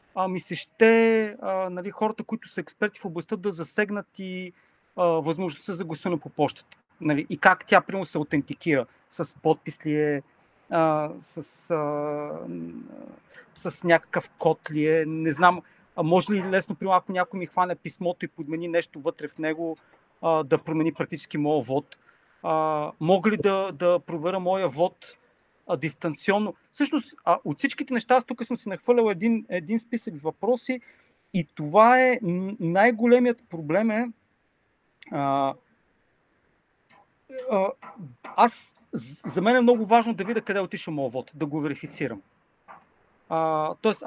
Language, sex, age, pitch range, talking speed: Bulgarian, male, 40-59, 160-220 Hz, 150 wpm